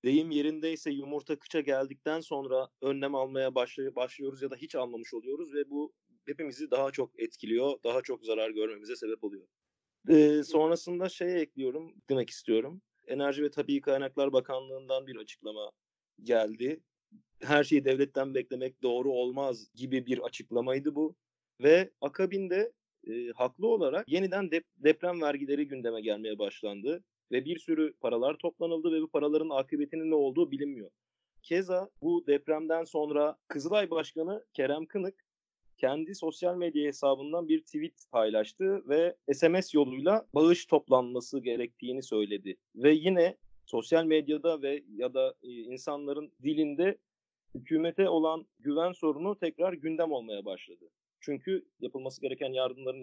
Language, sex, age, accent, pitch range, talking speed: Turkish, male, 30-49, native, 130-170 Hz, 130 wpm